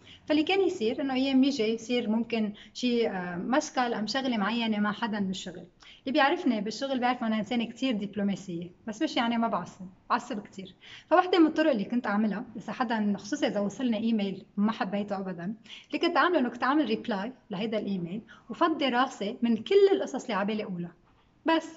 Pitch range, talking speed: 205-260 Hz, 175 wpm